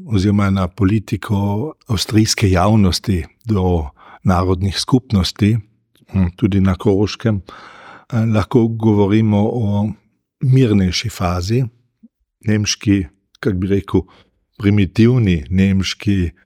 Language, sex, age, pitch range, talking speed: German, male, 50-69, 95-110 Hz, 80 wpm